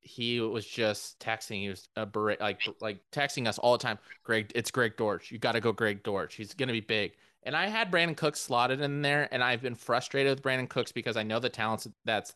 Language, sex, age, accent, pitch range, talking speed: English, male, 20-39, American, 110-135 Hz, 245 wpm